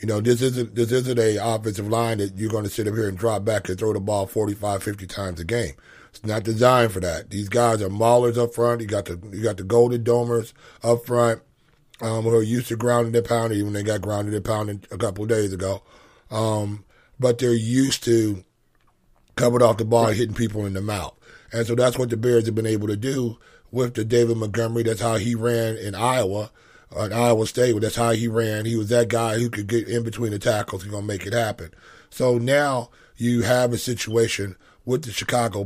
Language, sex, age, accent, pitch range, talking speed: English, male, 30-49, American, 105-120 Hz, 230 wpm